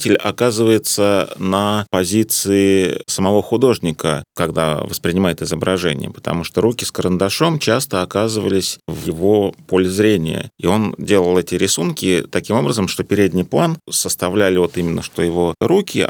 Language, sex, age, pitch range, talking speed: Russian, male, 30-49, 90-110 Hz, 130 wpm